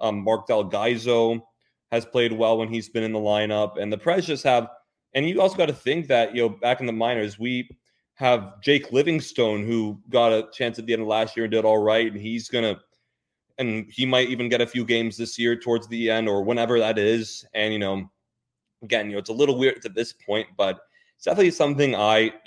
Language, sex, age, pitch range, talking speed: English, male, 30-49, 100-120 Hz, 235 wpm